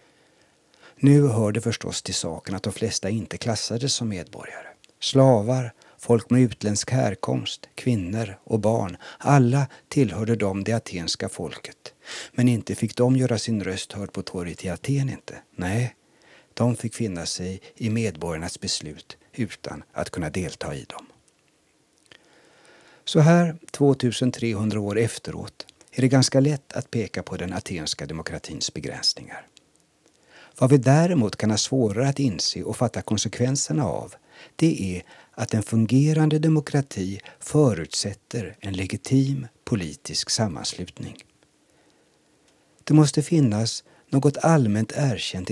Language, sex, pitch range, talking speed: Swedish, male, 100-135 Hz, 130 wpm